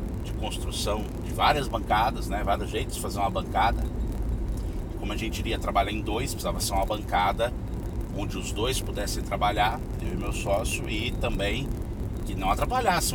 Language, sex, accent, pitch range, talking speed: Portuguese, male, Brazilian, 95-115 Hz, 165 wpm